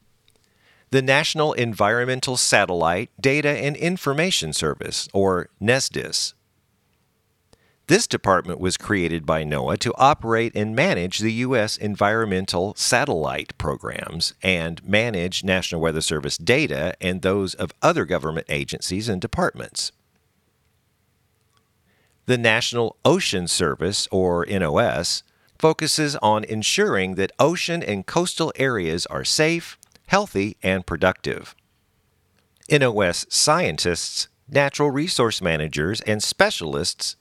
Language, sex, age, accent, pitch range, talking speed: English, male, 50-69, American, 95-135 Hz, 105 wpm